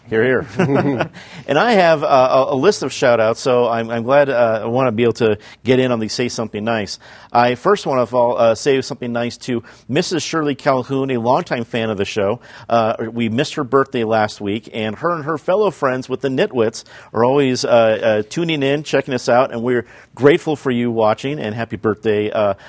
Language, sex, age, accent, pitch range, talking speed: English, male, 50-69, American, 115-145 Hz, 215 wpm